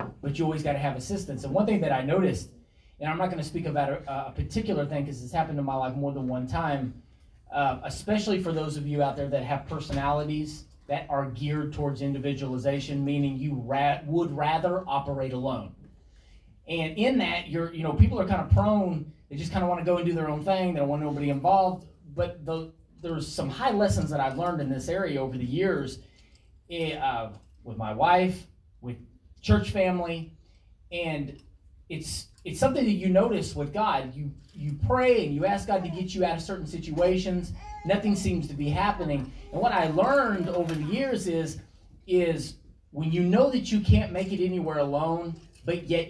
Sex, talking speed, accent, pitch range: male, 200 wpm, American, 140-180 Hz